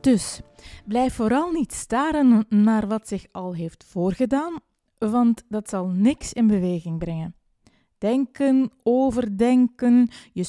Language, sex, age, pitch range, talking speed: Dutch, female, 20-39, 195-265 Hz, 120 wpm